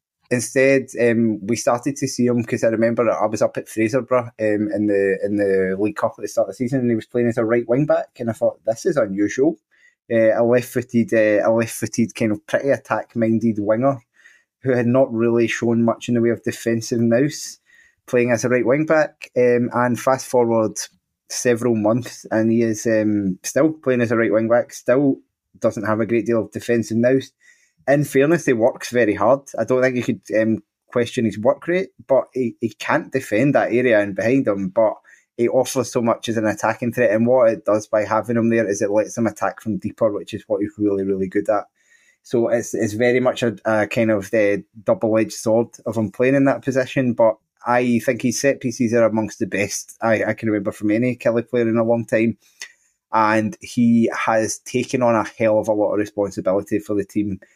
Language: English